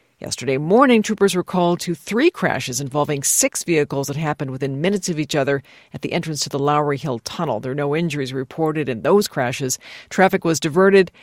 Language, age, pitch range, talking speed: English, 50-69, 140-175 Hz, 200 wpm